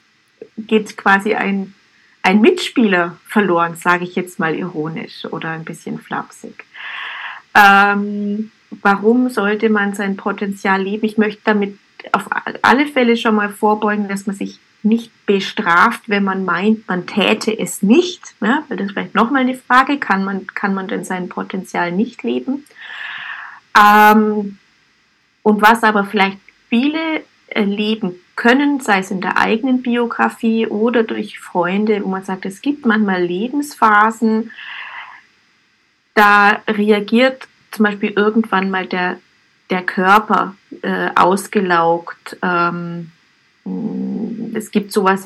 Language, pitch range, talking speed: German, 190-220 Hz, 125 wpm